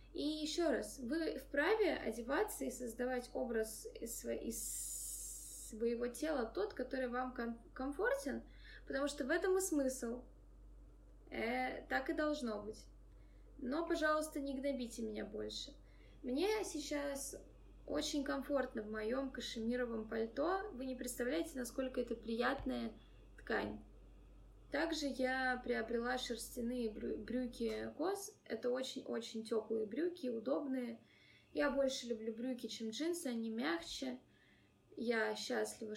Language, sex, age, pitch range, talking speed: Russian, female, 20-39, 230-295 Hz, 115 wpm